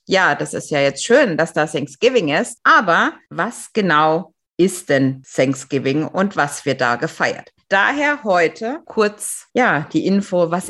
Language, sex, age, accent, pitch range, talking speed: German, female, 50-69, German, 150-220 Hz, 155 wpm